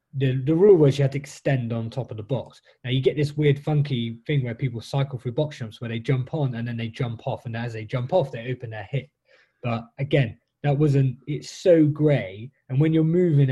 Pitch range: 115-140 Hz